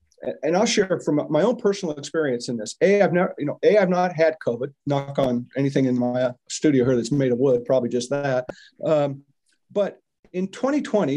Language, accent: English, American